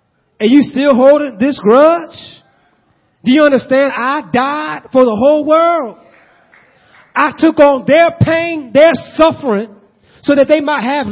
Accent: American